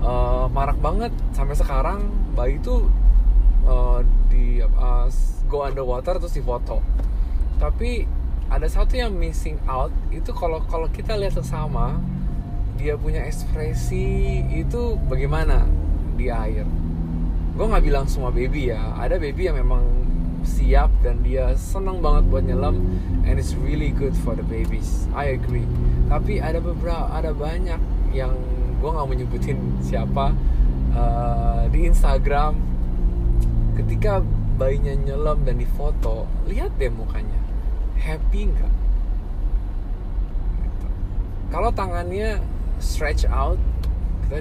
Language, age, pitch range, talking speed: English, 20-39, 65-95 Hz, 120 wpm